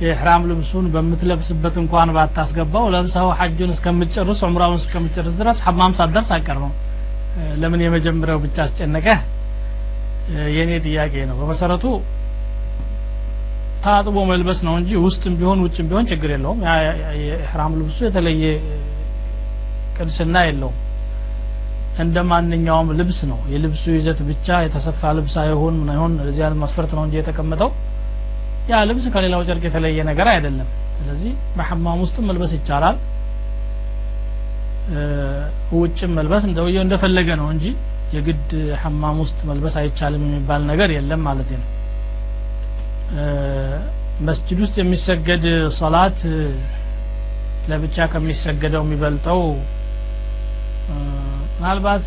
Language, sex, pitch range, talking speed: Amharic, male, 145-175 Hz, 100 wpm